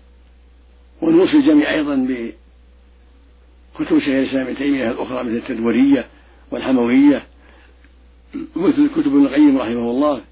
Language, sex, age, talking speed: Arabic, male, 60-79, 85 wpm